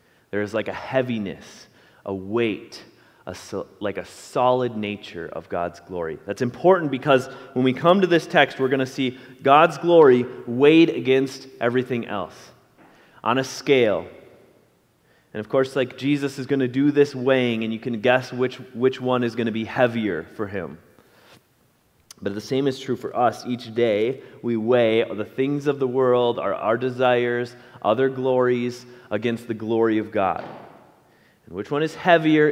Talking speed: 175 wpm